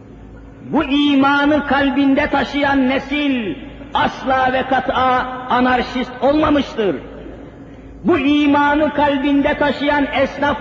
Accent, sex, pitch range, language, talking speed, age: native, male, 270-295 Hz, Turkish, 85 wpm, 50-69